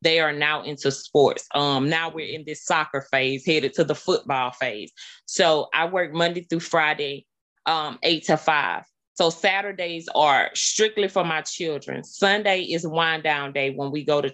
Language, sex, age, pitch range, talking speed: English, female, 20-39, 150-175 Hz, 180 wpm